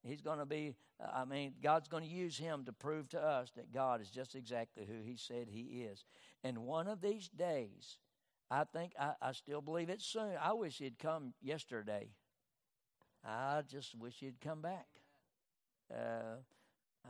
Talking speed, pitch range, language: 175 wpm, 120-160 Hz, English